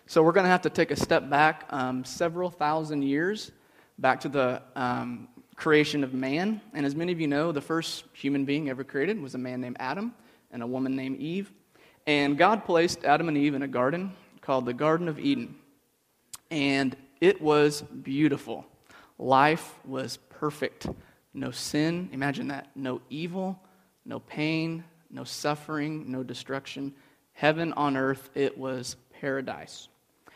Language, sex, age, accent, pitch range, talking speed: English, male, 30-49, American, 135-165 Hz, 160 wpm